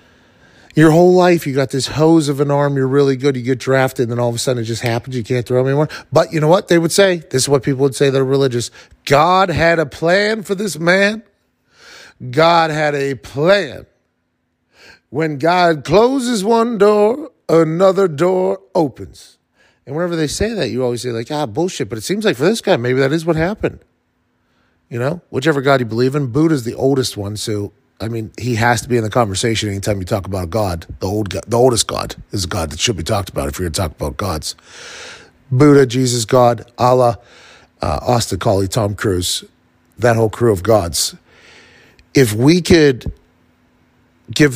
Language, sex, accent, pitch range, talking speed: English, male, American, 110-155 Hz, 205 wpm